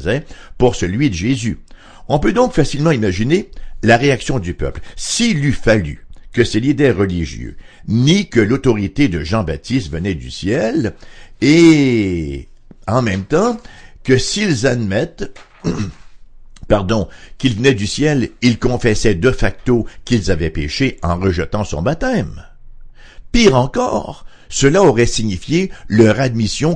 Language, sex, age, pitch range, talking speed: English, male, 60-79, 90-125 Hz, 130 wpm